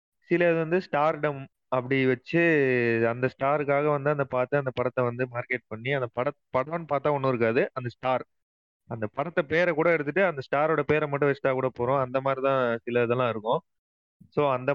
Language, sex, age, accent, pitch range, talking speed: Tamil, male, 30-49, native, 120-150 Hz, 185 wpm